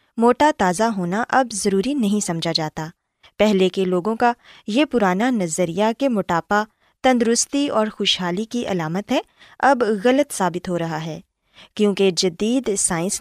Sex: female